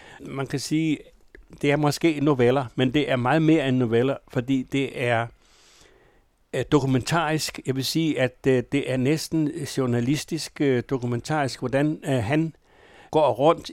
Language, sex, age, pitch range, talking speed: Danish, male, 60-79, 130-155 Hz, 140 wpm